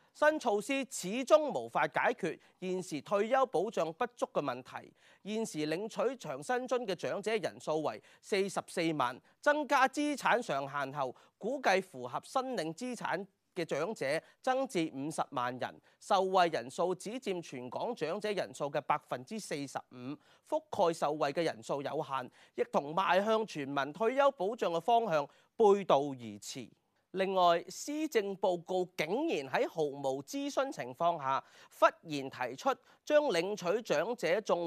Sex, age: male, 30-49